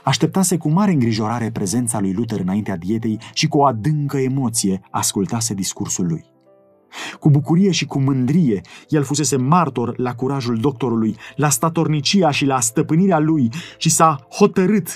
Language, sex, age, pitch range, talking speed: Romanian, male, 30-49, 120-170 Hz, 150 wpm